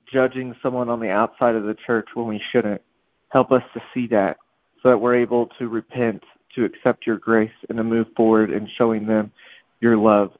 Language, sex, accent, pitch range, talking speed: English, male, American, 110-125 Hz, 200 wpm